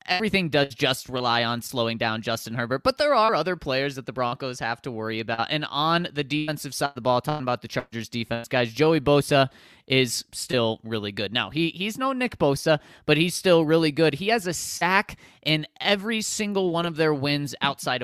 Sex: male